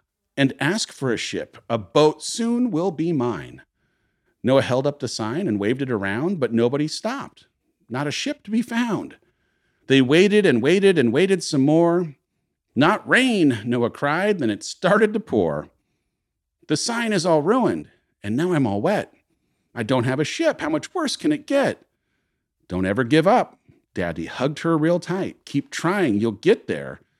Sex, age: male, 50-69